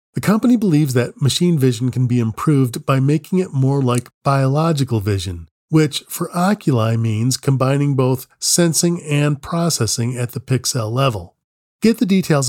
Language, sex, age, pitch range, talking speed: English, male, 40-59, 120-165 Hz, 155 wpm